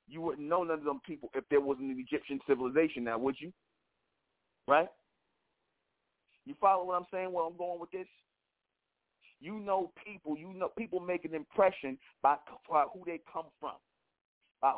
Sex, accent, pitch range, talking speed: male, American, 140-165 Hz, 175 wpm